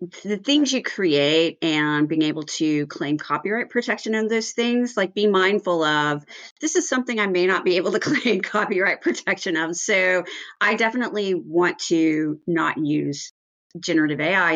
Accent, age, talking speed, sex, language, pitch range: American, 40-59, 165 wpm, female, English, 160-225 Hz